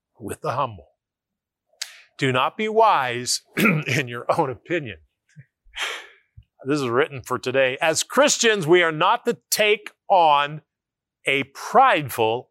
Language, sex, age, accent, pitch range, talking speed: English, male, 50-69, American, 120-165 Hz, 125 wpm